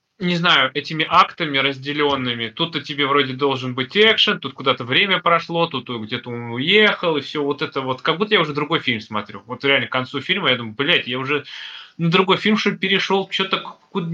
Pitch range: 130-165 Hz